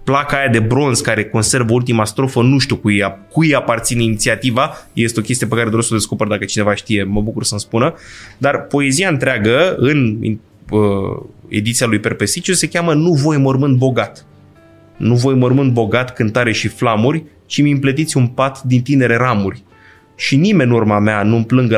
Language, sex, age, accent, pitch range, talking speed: Romanian, male, 20-39, native, 110-135 Hz, 180 wpm